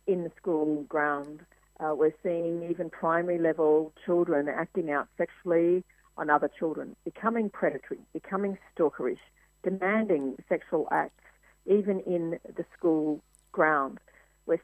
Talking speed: 125 wpm